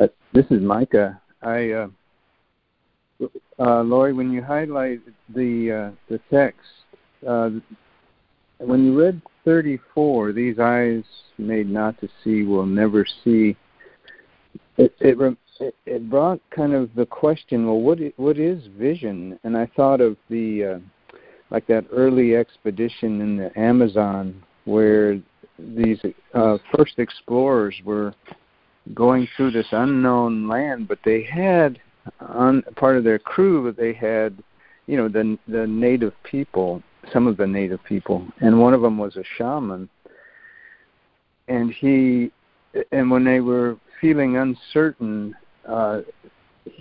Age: 50-69